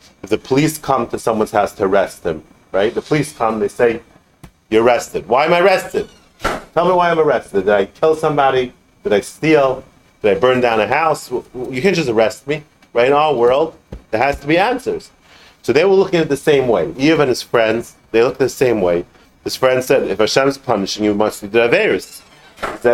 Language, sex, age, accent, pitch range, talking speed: English, male, 40-59, American, 115-160 Hz, 235 wpm